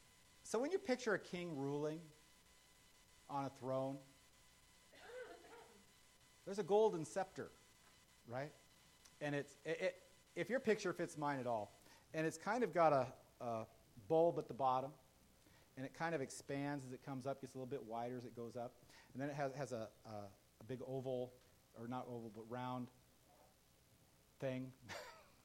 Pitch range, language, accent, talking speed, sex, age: 125-165 Hz, English, American, 160 wpm, male, 40-59